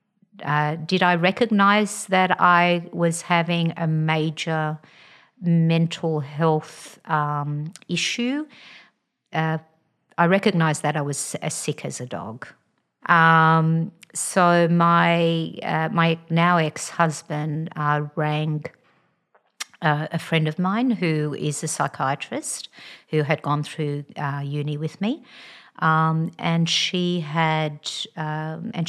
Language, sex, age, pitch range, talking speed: English, female, 50-69, 150-175 Hz, 115 wpm